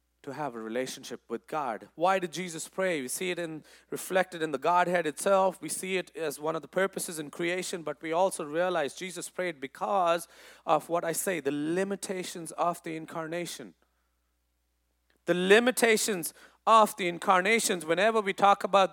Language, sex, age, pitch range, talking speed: English, male, 30-49, 170-225 Hz, 170 wpm